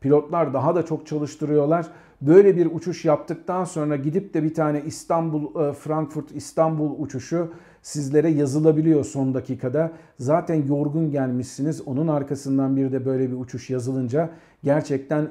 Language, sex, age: Turkish, male, 50-69